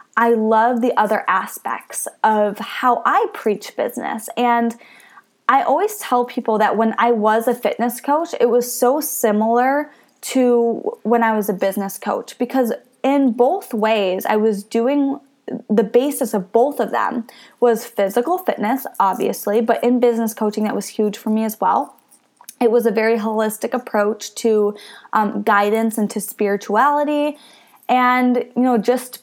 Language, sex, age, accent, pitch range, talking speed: English, female, 20-39, American, 210-245 Hz, 160 wpm